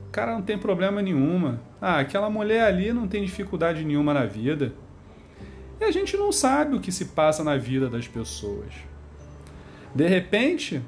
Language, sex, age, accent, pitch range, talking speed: Portuguese, male, 40-59, Brazilian, 130-215 Hz, 170 wpm